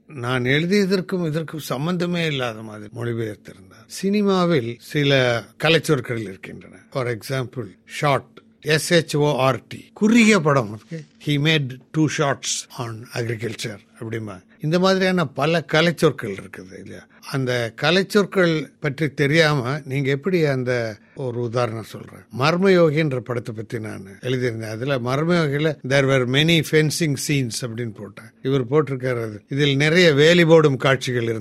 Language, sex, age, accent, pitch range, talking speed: Tamil, male, 50-69, native, 120-160 Hz, 65 wpm